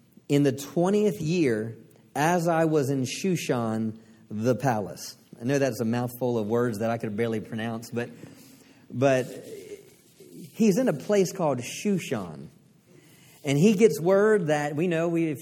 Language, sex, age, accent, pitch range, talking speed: English, male, 40-59, American, 130-185 Hz, 155 wpm